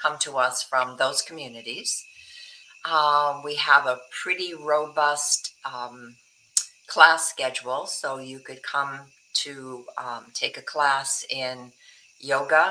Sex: female